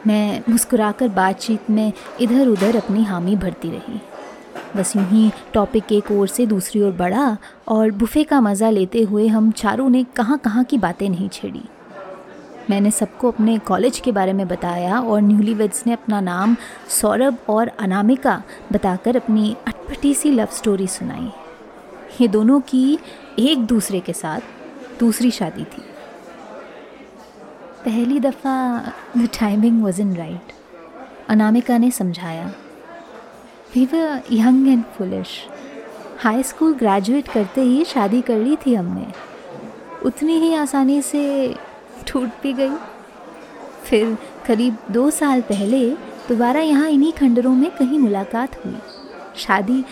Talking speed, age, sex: 135 wpm, 20-39, female